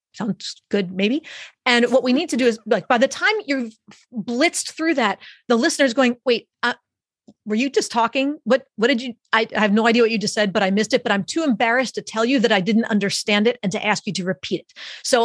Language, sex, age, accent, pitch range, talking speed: English, female, 30-49, American, 200-255 Hz, 250 wpm